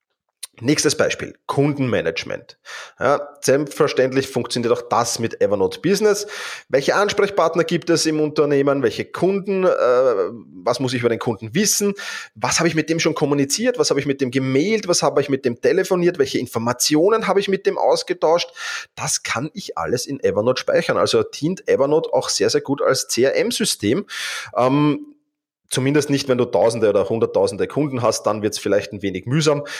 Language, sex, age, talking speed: German, male, 30-49, 170 wpm